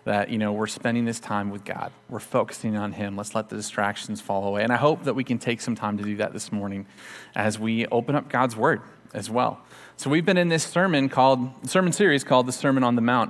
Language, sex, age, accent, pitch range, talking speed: English, male, 30-49, American, 115-150 Hz, 255 wpm